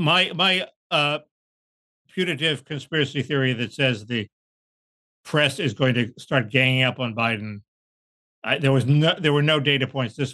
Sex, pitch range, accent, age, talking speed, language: male, 110-140 Hz, American, 60-79, 165 wpm, English